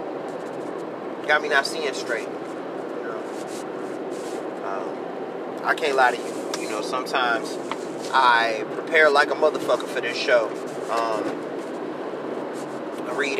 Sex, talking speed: male, 110 wpm